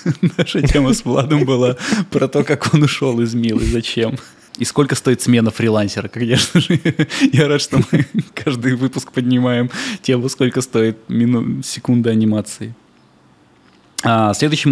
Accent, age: native, 20-39